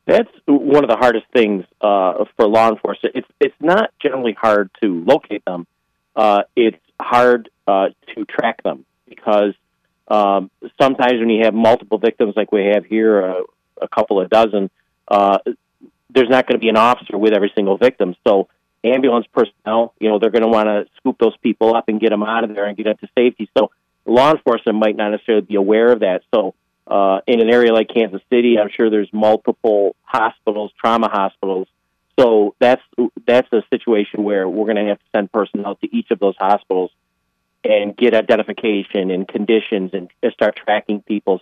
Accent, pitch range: American, 100-115 Hz